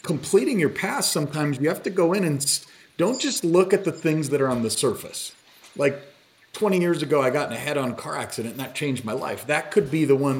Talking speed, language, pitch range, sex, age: 240 wpm, English, 120-155 Hz, male, 40-59